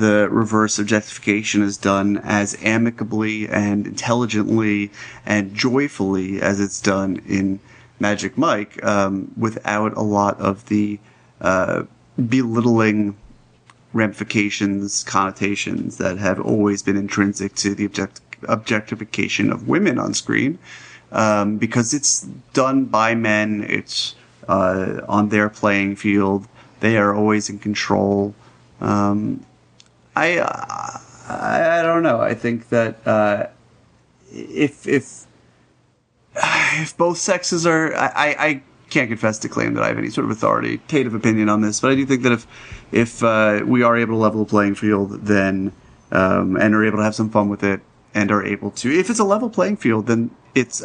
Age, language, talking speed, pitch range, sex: 30-49, English, 150 wpm, 100-120 Hz, male